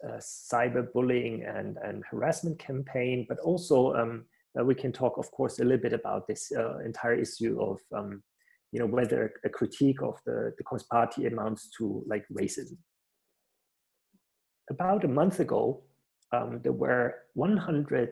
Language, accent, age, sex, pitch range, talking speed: English, German, 30-49, male, 120-160 Hz, 160 wpm